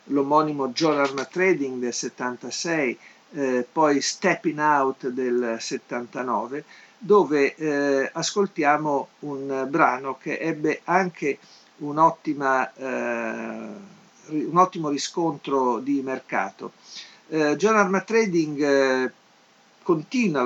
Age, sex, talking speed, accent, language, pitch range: 50-69, male, 95 wpm, native, Italian, 130-160 Hz